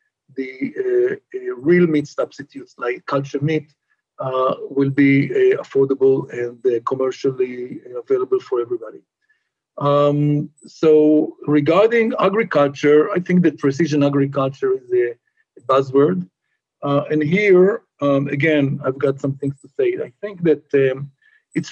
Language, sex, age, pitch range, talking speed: English, male, 50-69, 145-195 Hz, 130 wpm